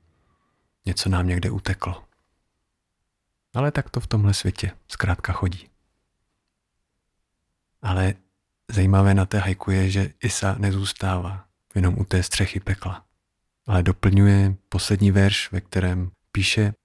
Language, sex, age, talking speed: Czech, male, 40-59, 120 wpm